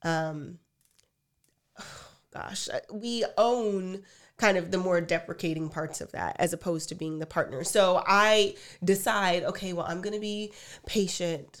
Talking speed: 150 wpm